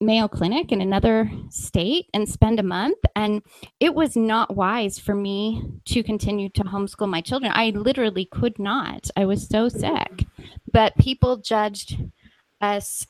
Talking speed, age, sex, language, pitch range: 155 wpm, 30-49, female, English, 195-230 Hz